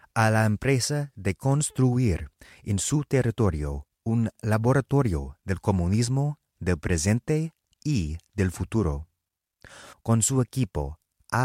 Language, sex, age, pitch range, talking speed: English, male, 30-49, 90-135 Hz, 110 wpm